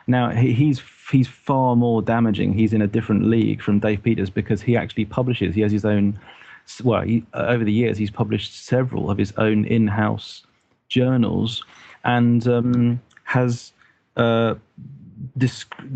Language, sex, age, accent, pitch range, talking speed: English, male, 30-49, British, 110-125 Hz, 150 wpm